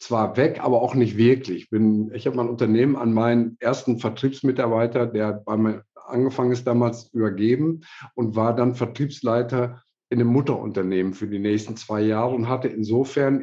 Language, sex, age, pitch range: German, male, 50-69, 110-125 Hz